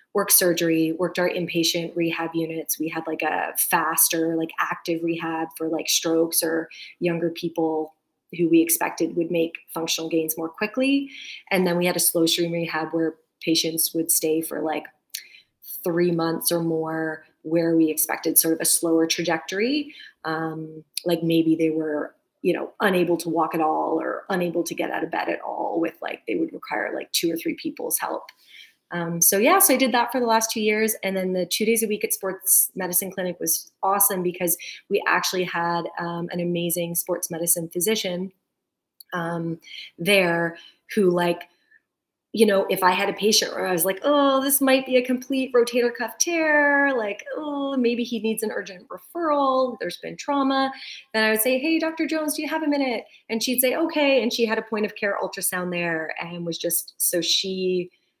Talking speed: 195 wpm